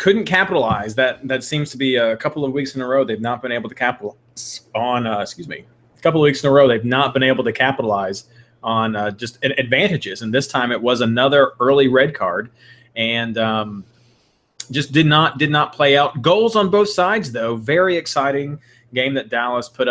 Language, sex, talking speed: English, male, 210 wpm